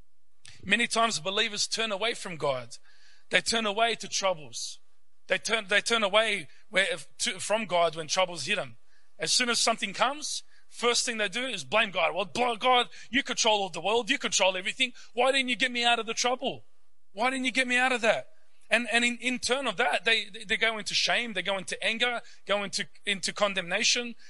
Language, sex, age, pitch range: English, male, 30-49, 170-230 Hz